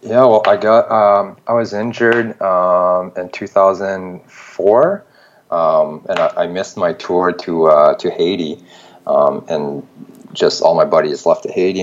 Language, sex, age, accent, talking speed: English, male, 30-49, American, 150 wpm